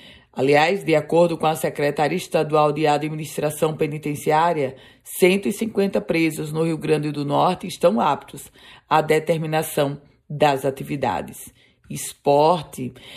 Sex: female